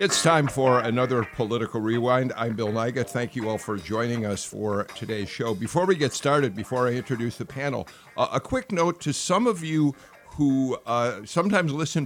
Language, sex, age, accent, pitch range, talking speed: English, male, 50-69, American, 110-140 Hz, 195 wpm